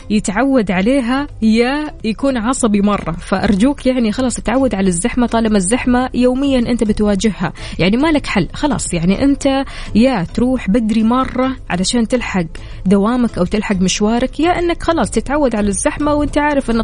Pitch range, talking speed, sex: 190-250 Hz, 150 wpm, female